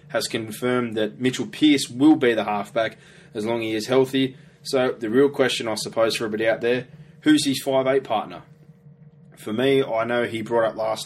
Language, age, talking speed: English, 20-39, 200 wpm